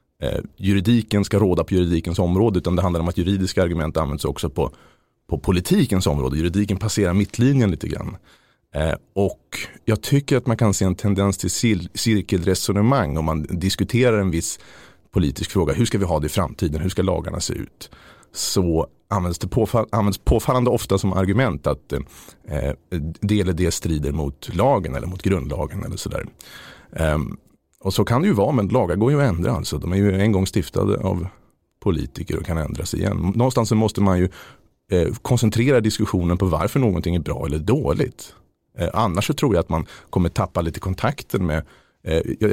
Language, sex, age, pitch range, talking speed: Swedish, male, 30-49, 85-105 Hz, 185 wpm